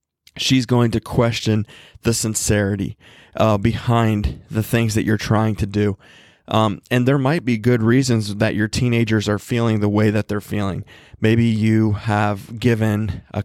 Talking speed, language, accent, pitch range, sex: 165 wpm, English, American, 105-115 Hz, male